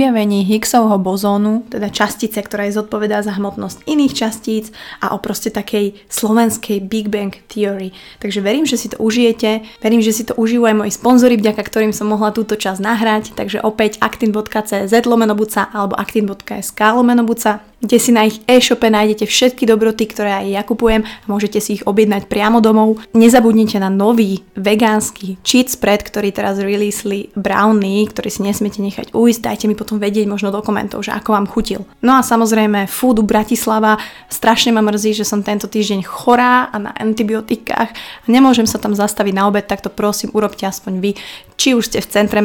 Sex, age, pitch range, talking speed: female, 20-39, 205-225 Hz, 175 wpm